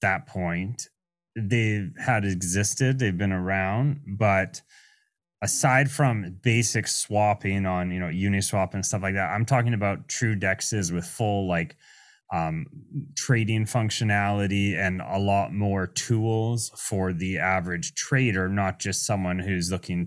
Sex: male